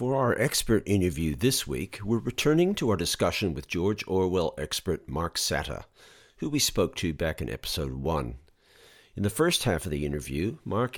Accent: American